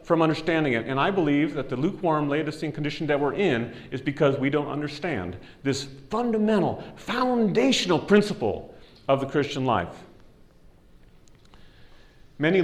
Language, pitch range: English, 140-200 Hz